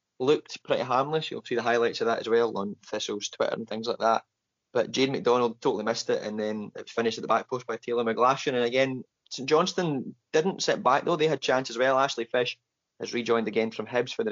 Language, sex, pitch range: English, male, 115-135 Hz